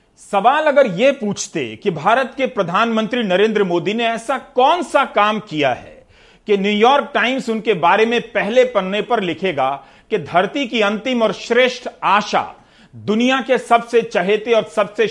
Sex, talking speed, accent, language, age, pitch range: male, 160 wpm, native, Hindi, 40-59, 195-250 Hz